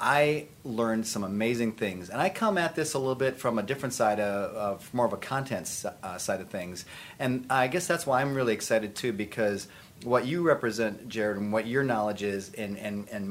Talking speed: 215 wpm